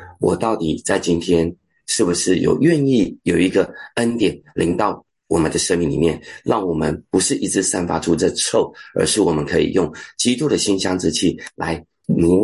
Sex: male